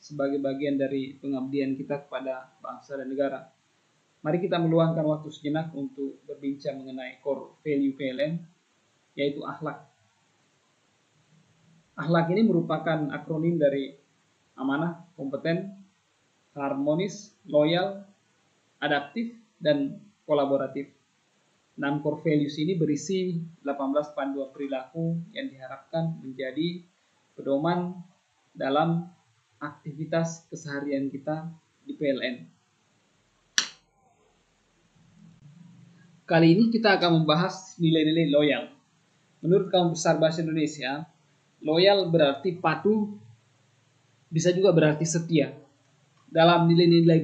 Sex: male